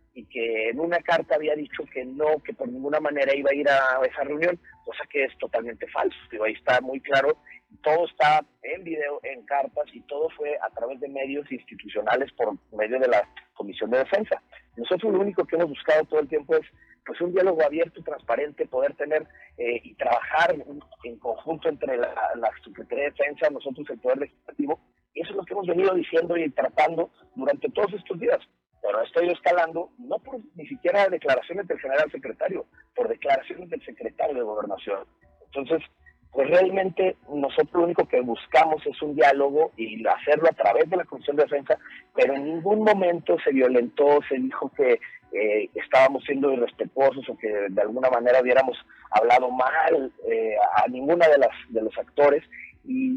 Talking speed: 185 wpm